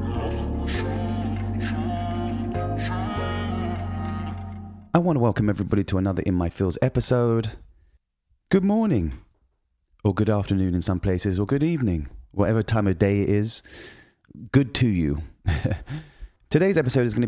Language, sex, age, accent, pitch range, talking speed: English, male, 30-49, British, 95-115 Hz, 120 wpm